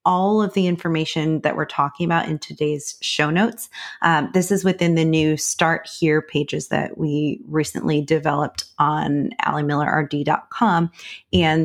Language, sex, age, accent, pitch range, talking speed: English, female, 30-49, American, 150-175 Hz, 145 wpm